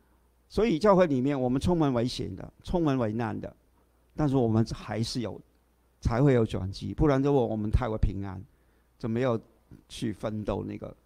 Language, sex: Chinese, male